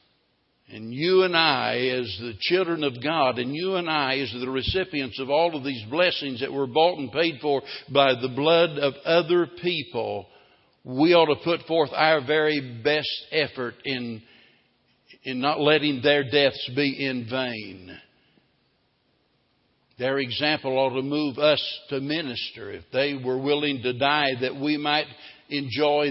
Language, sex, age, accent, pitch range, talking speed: English, male, 60-79, American, 125-150 Hz, 160 wpm